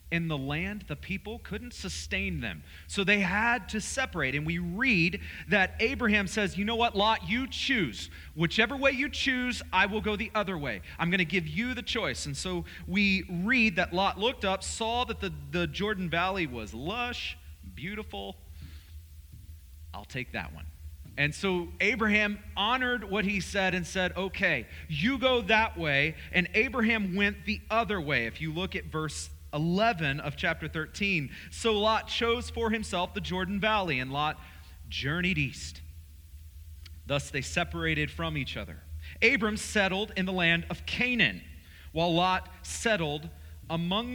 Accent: American